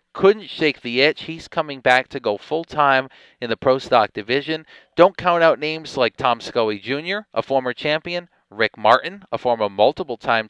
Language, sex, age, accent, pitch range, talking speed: English, male, 40-59, American, 120-150 Hz, 175 wpm